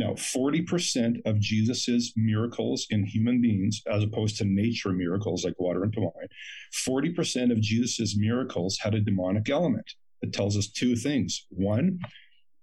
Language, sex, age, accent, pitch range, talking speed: English, male, 50-69, American, 105-135 Hz, 145 wpm